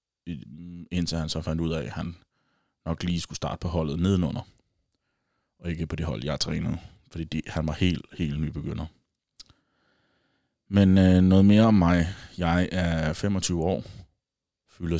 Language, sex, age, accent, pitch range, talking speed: Danish, male, 30-49, native, 80-90 Hz, 150 wpm